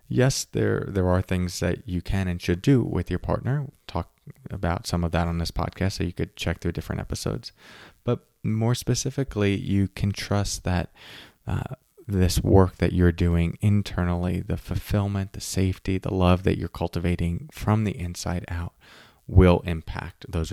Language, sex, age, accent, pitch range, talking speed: English, male, 20-39, American, 85-100 Hz, 175 wpm